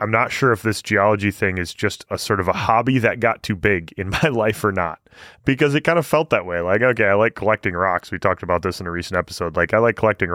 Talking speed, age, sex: 280 wpm, 20-39, male